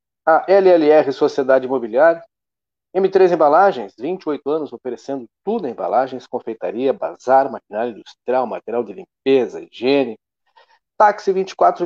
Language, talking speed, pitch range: Portuguese, 110 wpm, 125-190 Hz